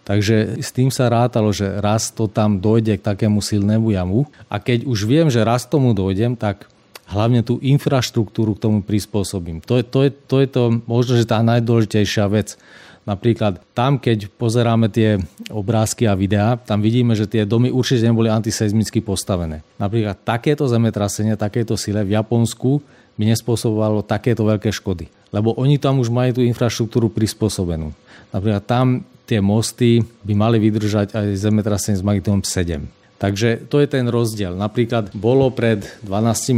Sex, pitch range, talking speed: male, 105-120 Hz, 160 wpm